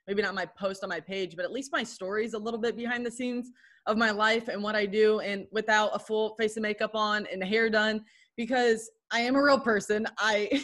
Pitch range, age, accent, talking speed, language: 180-220 Hz, 20-39, American, 245 wpm, English